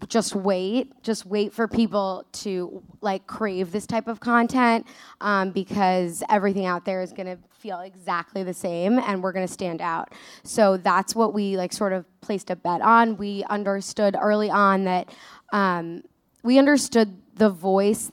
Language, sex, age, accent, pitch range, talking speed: English, female, 10-29, American, 190-220 Hz, 170 wpm